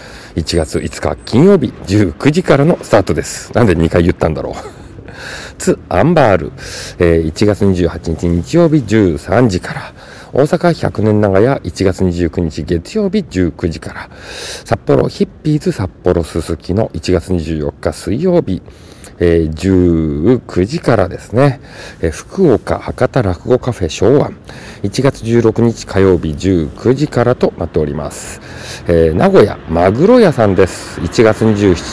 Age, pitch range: 50-69, 85-115 Hz